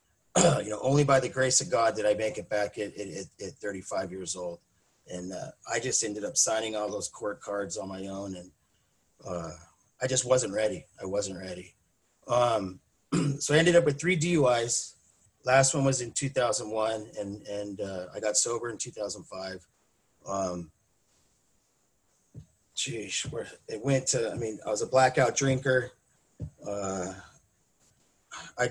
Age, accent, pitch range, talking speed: 30-49, American, 100-130 Hz, 165 wpm